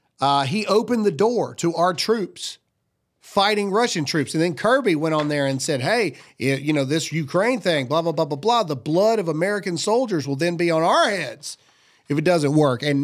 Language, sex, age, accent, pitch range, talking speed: English, male, 40-59, American, 160-235 Hz, 210 wpm